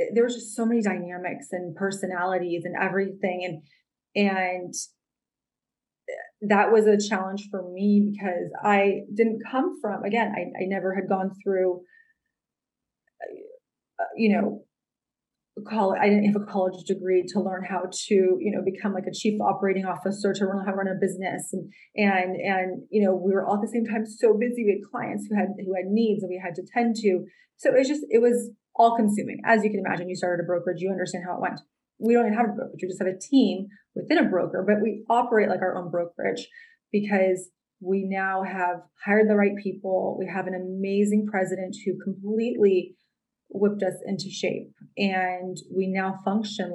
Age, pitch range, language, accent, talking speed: 30-49, 185-215 Hz, English, American, 190 wpm